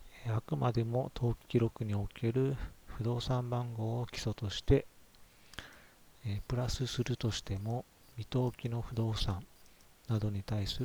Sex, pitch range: male, 95-120 Hz